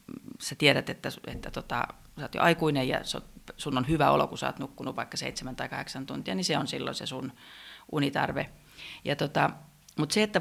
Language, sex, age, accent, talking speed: Finnish, female, 30-49, native, 200 wpm